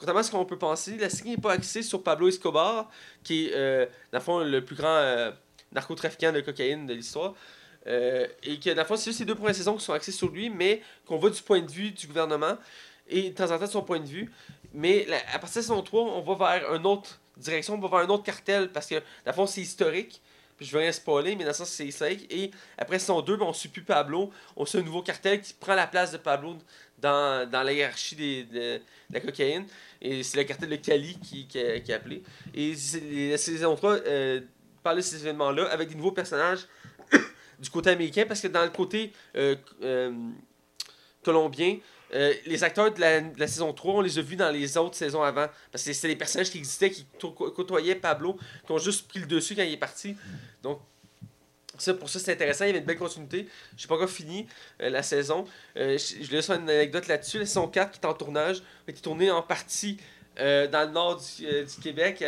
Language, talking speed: French, 235 wpm